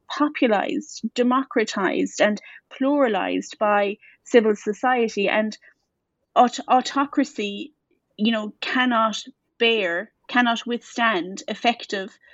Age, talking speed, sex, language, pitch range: 30-49, 85 wpm, female, English, 200-230 Hz